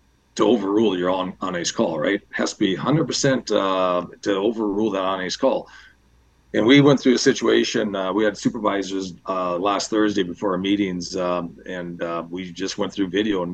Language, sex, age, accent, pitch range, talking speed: English, male, 40-59, American, 90-115 Hz, 185 wpm